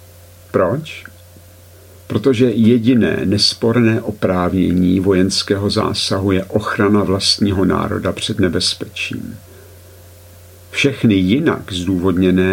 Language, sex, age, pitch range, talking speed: Czech, male, 50-69, 90-105 Hz, 75 wpm